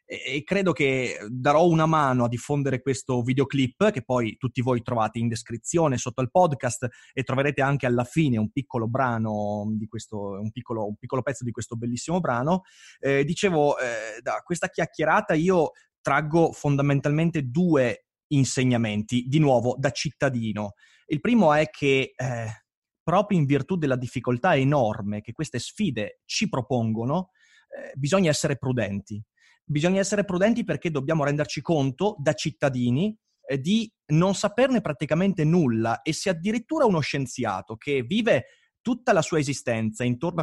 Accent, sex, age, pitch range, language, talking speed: native, male, 30-49, 125-170 Hz, Italian, 150 wpm